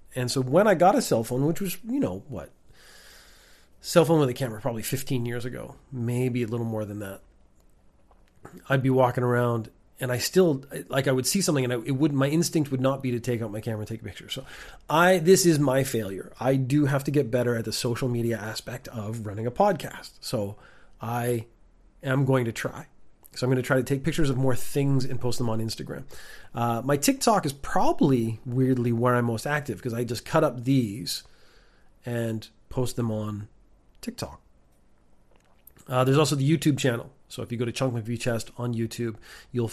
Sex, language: male, English